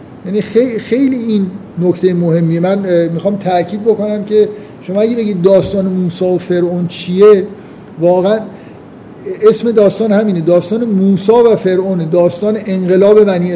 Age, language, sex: 50-69, Persian, male